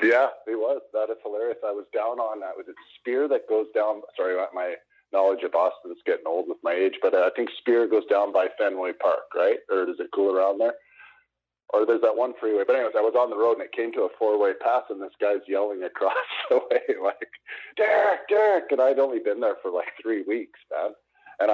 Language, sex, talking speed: English, male, 245 wpm